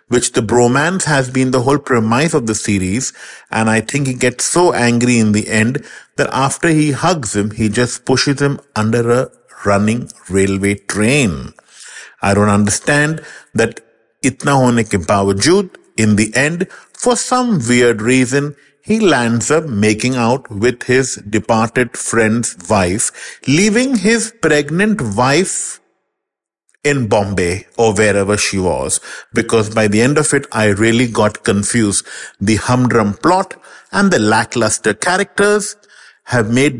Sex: male